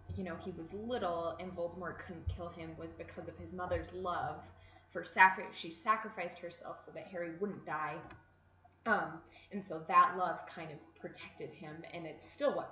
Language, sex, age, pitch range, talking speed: English, female, 20-39, 170-225 Hz, 185 wpm